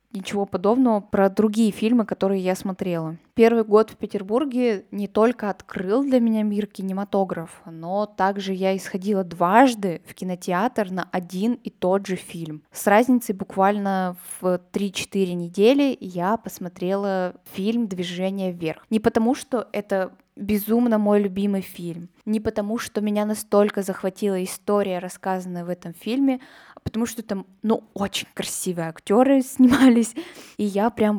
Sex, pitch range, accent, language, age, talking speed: female, 185-220 Hz, native, Russian, 20-39, 140 wpm